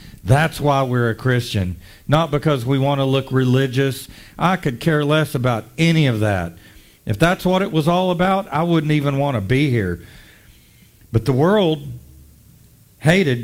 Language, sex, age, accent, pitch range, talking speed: English, male, 50-69, American, 125-180 Hz, 170 wpm